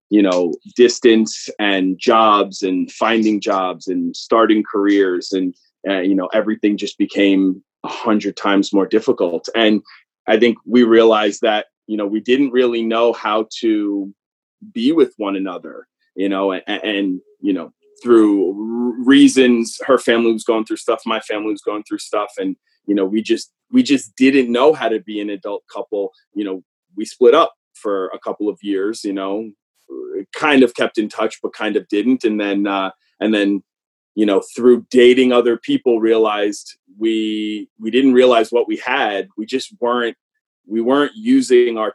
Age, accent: 30-49, American